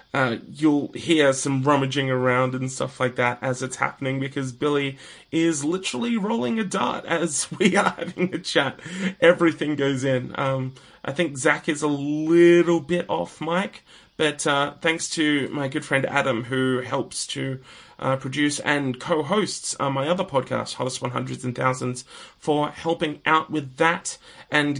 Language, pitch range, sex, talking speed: English, 140-185 Hz, male, 160 wpm